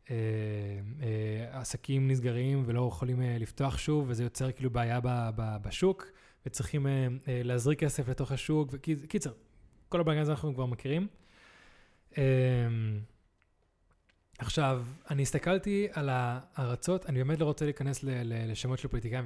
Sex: male